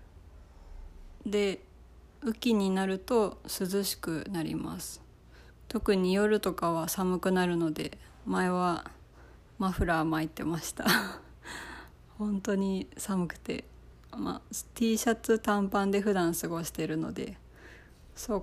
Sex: female